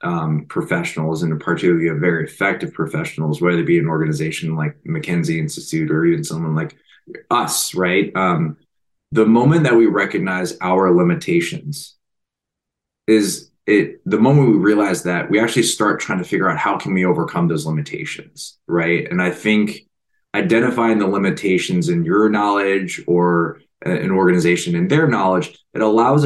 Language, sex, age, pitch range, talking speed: English, male, 20-39, 85-115 Hz, 155 wpm